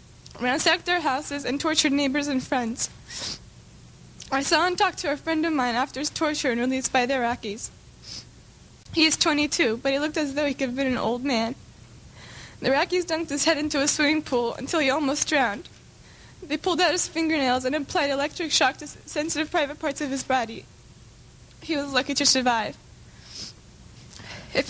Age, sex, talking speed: 10-29, female, 180 wpm